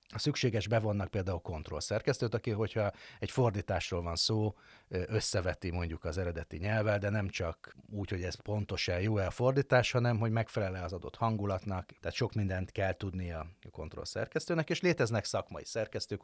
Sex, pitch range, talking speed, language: male, 90-110 Hz, 165 wpm, Hungarian